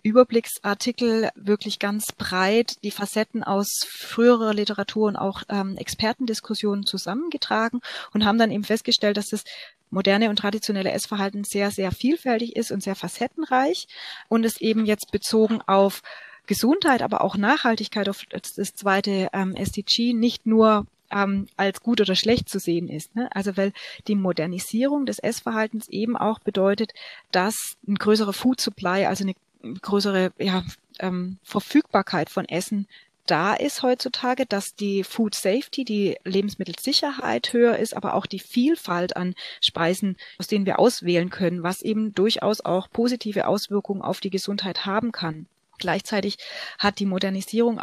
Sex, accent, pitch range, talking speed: female, German, 195-225 Hz, 145 wpm